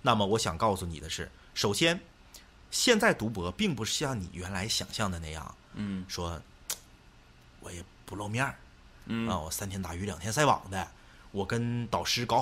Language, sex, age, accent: Chinese, male, 30-49, native